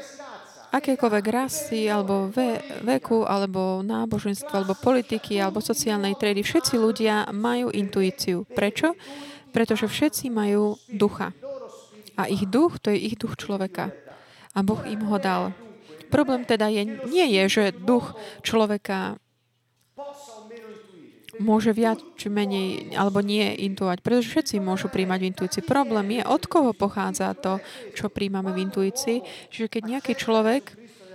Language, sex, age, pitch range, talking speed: Slovak, female, 20-39, 200-245 Hz, 135 wpm